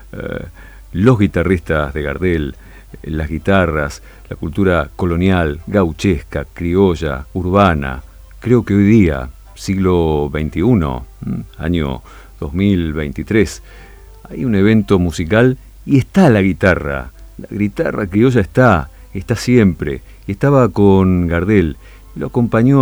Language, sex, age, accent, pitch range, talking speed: Spanish, male, 50-69, Argentinian, 80-100 Hz, 105 wpm